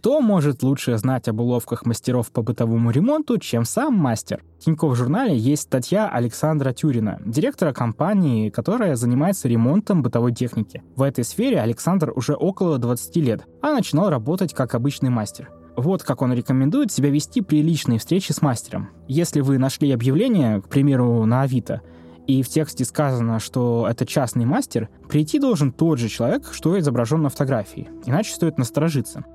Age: 20-39